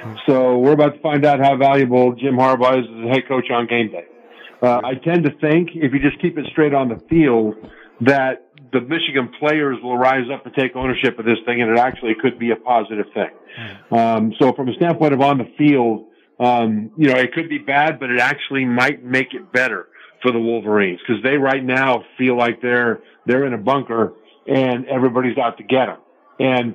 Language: English